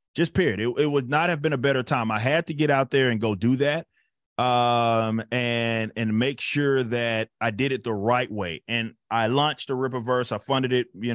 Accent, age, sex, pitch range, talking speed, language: American, 30-49, male, 115-130 Hz, 225 wpm, English